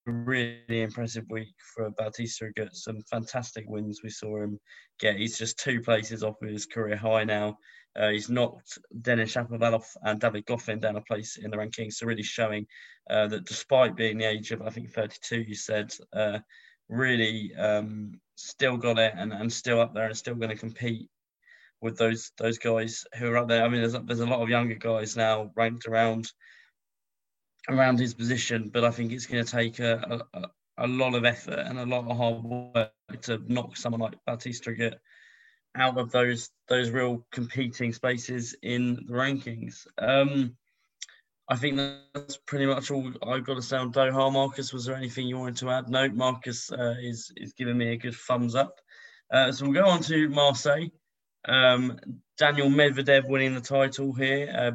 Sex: male